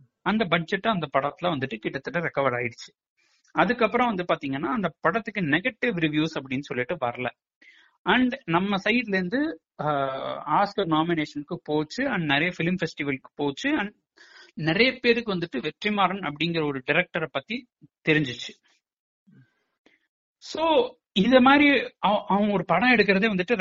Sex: male